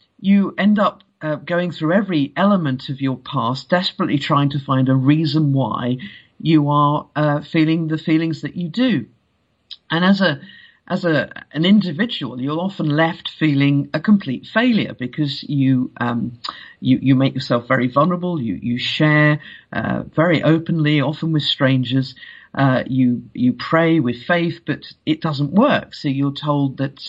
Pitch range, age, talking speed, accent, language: 130-165 Hz, 50-69, 160 wpm, British, English